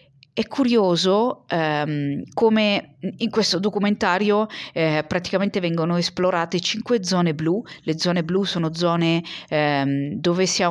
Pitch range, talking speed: 160-205 Hz, 130 wpm